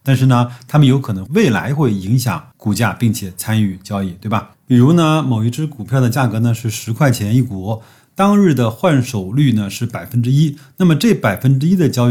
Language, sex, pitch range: Chinese, male, 105-135 Hz